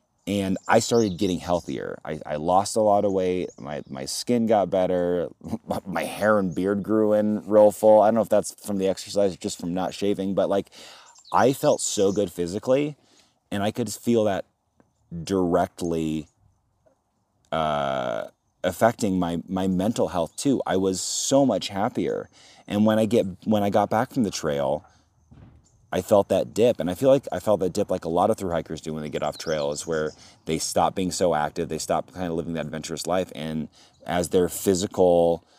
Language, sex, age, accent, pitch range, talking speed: English, male, 30-49, American, 80-100 Hz, 195 wpm